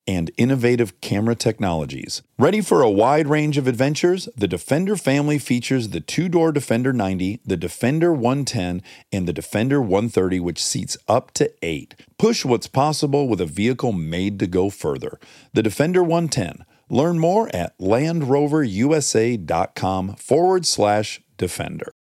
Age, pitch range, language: 40-59, 105-155 Hz, English